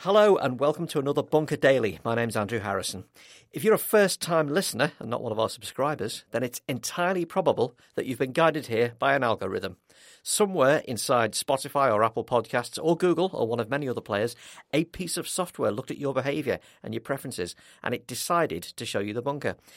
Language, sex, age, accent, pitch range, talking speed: English, male, 50-69, British, 110-150 Hz, 205 wpm